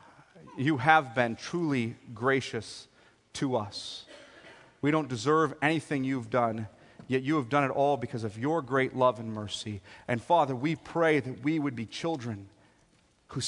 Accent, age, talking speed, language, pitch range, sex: American, 40-59, 160 wpm, English, 110-145 Hz, male